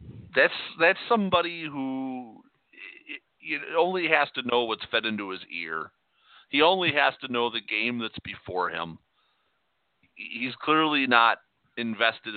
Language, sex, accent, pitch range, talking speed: English, male, American, 105-130 Hz, 140 wpm